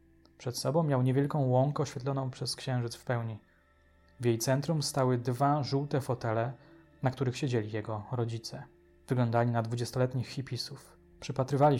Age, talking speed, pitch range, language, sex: 20-39, 135 wpm, 105-135 Hz, Polish, male